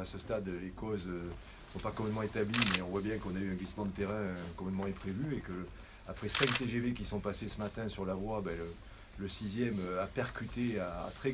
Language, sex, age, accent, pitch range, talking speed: French, male, 40-59, French, 95-110 Hz, 235 wpm